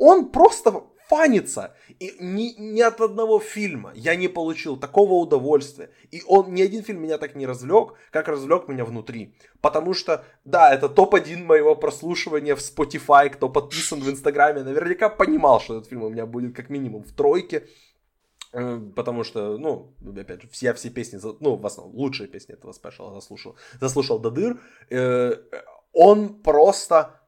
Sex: male